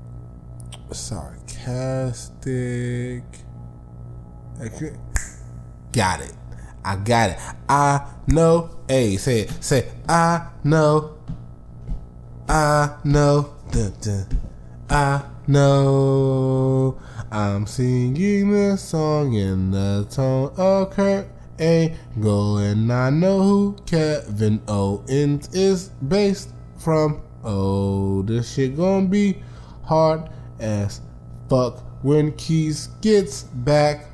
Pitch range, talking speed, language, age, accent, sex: 100-150 Hz, 90 wpm, English, 20-39, American, male